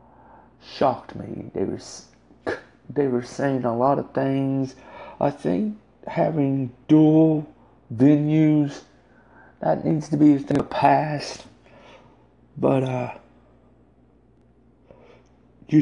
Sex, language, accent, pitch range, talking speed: male, English, American, 135-190 Hz, 105 wpm